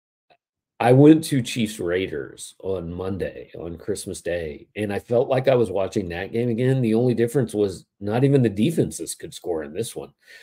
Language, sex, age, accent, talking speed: English, male, 40-59, American, 190 wpm